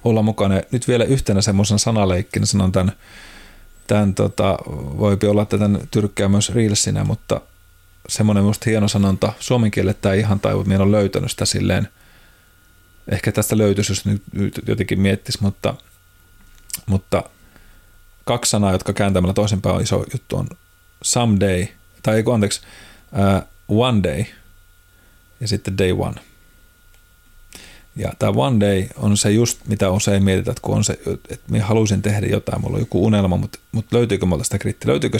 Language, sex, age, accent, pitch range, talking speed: Finnish, male, 30-49, native, 95-110 Hz, 145 wpm